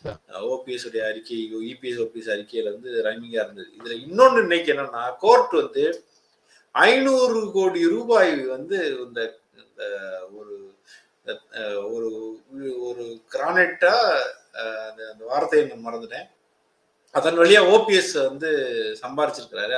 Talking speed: 60 wpm